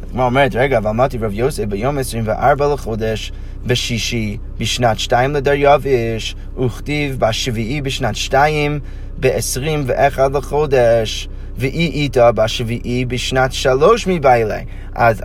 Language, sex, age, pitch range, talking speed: Hebrew, male, 20-39, 120-155 Hz, 120 wpm